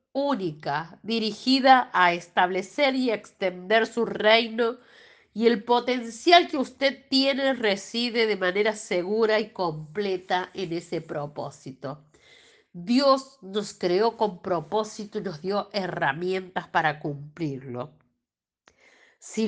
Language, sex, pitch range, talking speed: Spanish, female, 180-230 Hz, 110 wpm